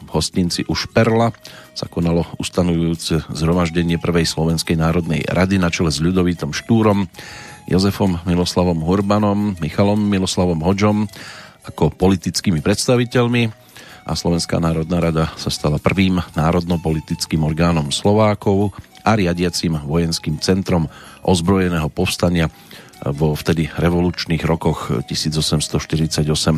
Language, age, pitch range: Slovak, 40-59, 80-105 Hz